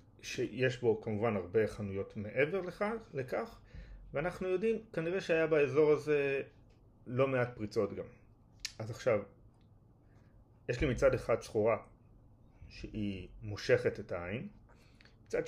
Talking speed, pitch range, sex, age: 115 wpm, 110-140 Hz, male, 30-49